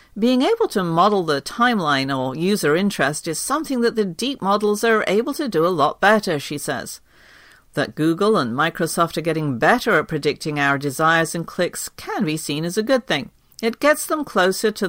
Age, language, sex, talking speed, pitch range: 50-69, English, female, 200 wpm, 150-215 Hz